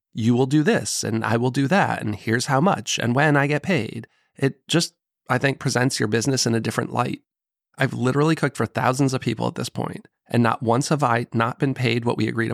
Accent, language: American, English